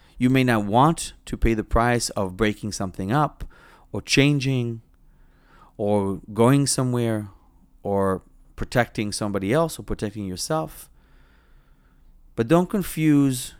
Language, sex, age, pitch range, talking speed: English, male, 30-49, 95-130 Hz, 120 wpm